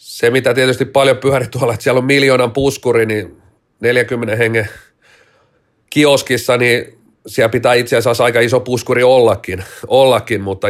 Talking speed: 145 wpm